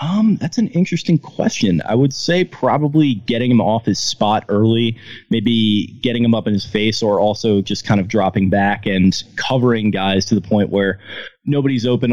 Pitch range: 100-125 Hz